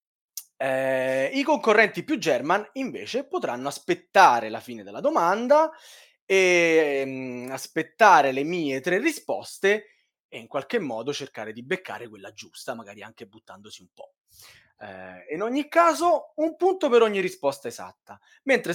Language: Italian